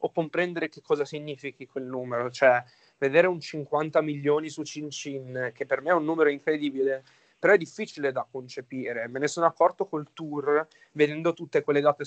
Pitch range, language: 140-160 Hz, Italian